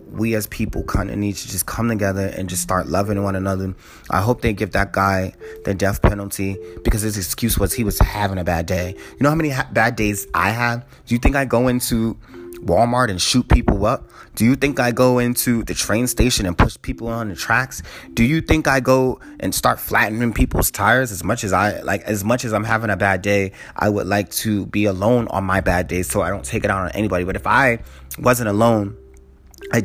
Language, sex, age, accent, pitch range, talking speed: English, male, 20-39, American, 95-125 Hz, 235 wpm